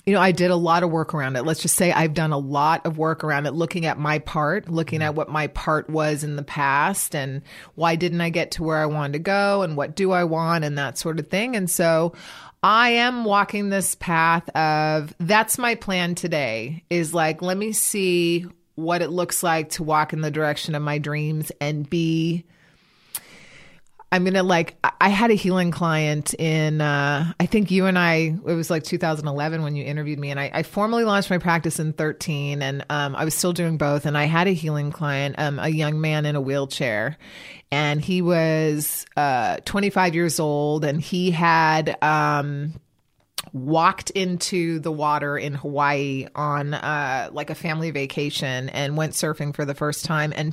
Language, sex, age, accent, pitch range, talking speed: English, female, 30-49, American, 150-175 Hz, 200 wpm